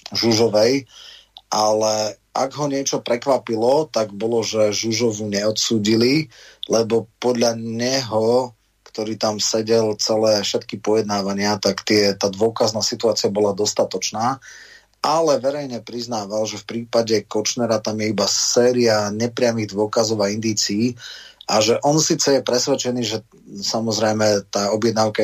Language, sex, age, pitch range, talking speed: Slovak, male, 30-49, 105-120 Hz, 125 wpm